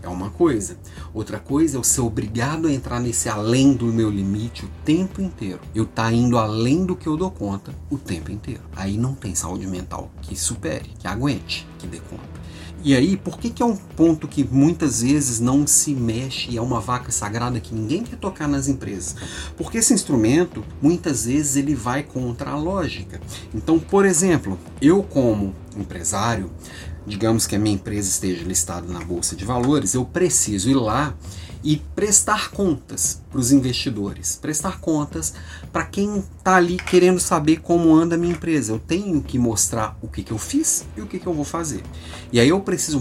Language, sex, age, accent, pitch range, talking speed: Portuguese, male, 40-59, Brazilian, 100-155 Hz, 190 wpm